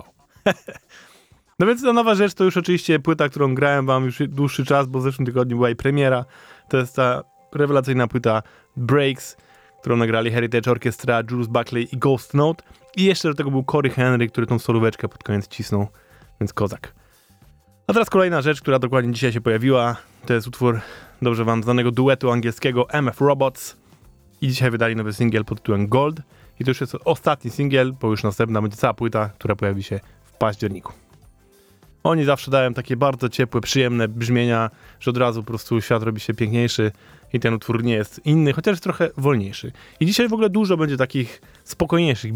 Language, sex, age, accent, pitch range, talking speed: Polish, male, 20-39, native, 115-145 Hz, 185 wpm